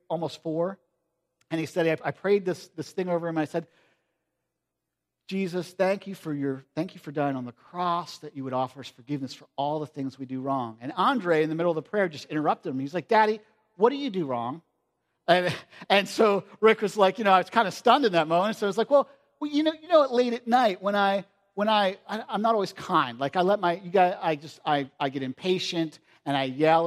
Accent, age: American, 50-69